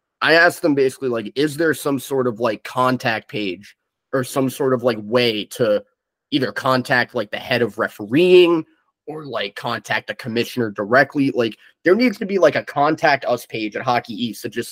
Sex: male